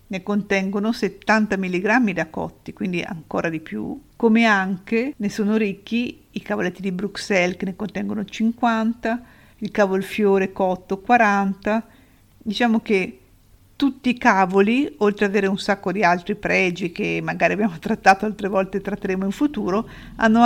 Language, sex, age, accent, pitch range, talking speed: Italian, female, 50-69, native, 190-220 Hz, 145 wpm